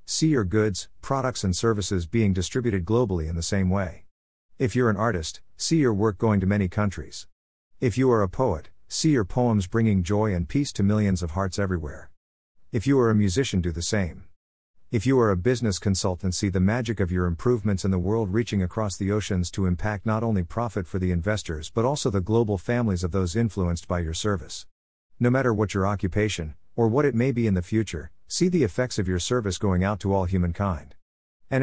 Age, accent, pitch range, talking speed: 50-69, American, 90-115 Hz, 215 wpm